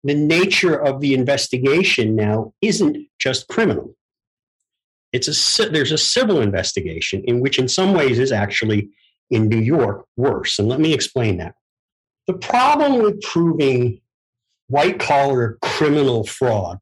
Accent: American